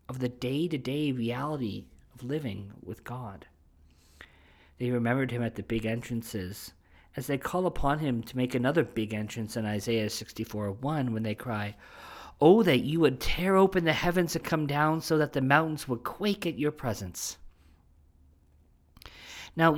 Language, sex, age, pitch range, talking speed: English, male, 50-69, 95-140 Hz, 160 wpm